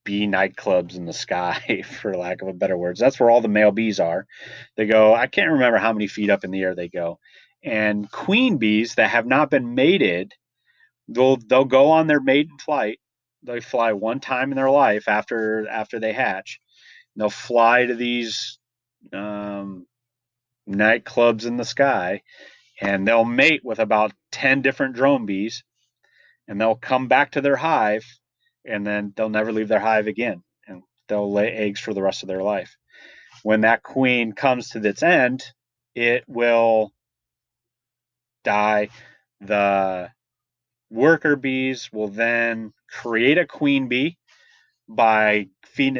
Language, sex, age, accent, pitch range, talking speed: English, male, 30-49, American, 105-125 Hz, 160 wpm